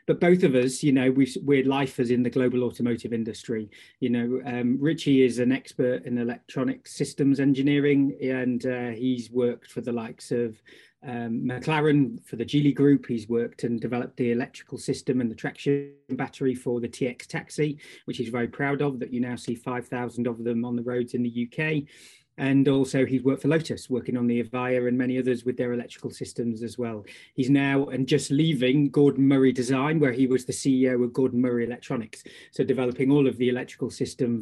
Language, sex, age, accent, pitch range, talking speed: English, male, 30-49, British, 120-140 Hz, 200 wpm